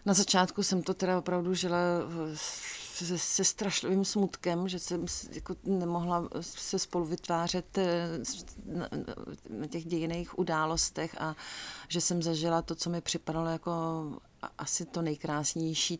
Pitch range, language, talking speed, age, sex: 155-175 Hz, Czech, 125 wpm, 40-59, female